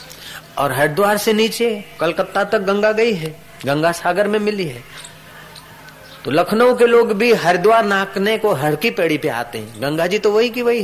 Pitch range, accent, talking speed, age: 140-205 Hz, native, 185 wpm, 30-49